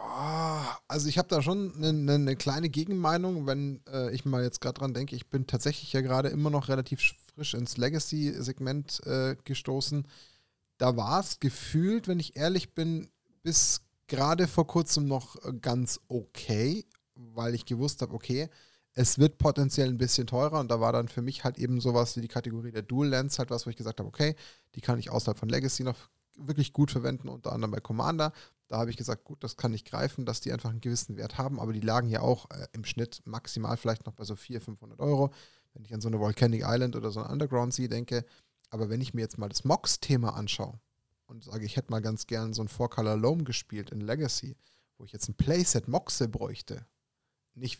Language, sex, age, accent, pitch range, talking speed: German, male, 10-29, German, 115-145 Hz, 210 wpm